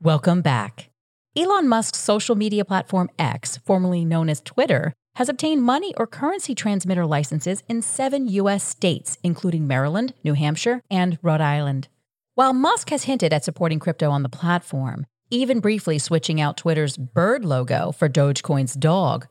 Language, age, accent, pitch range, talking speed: English, 40-59, American, 150-215 Hz, 155 wpm